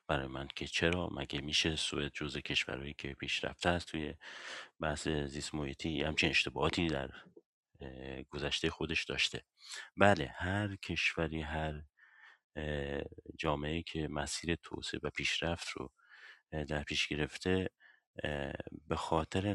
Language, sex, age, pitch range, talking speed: Persian, male, 30-49, 75-85 Hz, 115 wpm